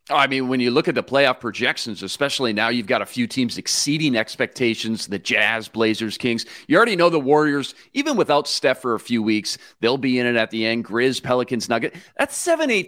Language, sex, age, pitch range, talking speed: English, male, 40-59, 115-155 Hz, 220 wpm